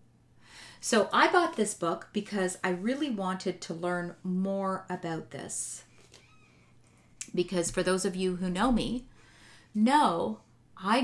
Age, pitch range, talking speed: 30-49, 185-225 Hz, 130 wpm